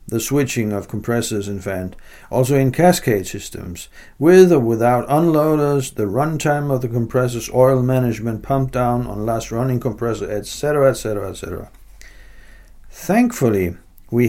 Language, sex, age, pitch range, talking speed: English, male, 60-79, 110-140 Hz, 125 wpm